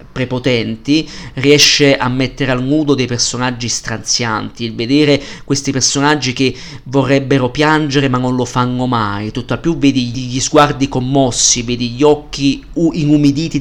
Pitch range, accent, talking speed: 130-150 Hz, native, 135 wpm